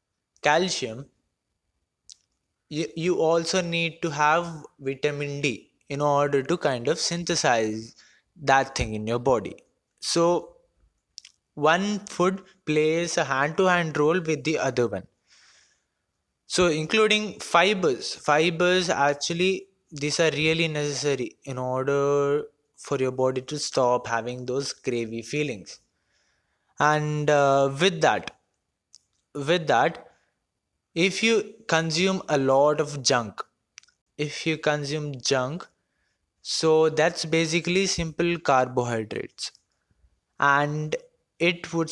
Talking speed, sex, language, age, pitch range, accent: 105 wpm, male, English, 20-39, 135-165 Hz, Indian